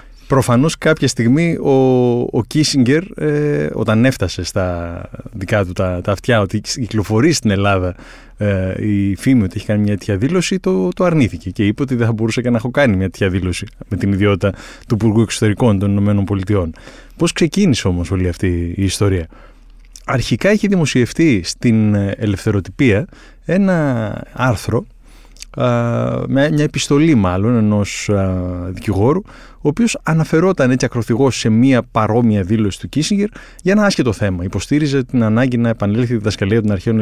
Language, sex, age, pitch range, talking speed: Greek, male, 20-39, 100-135 Hz, 155 wpm